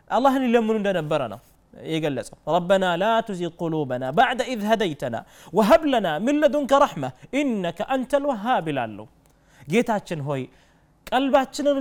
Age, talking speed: 30-49, 110 wpm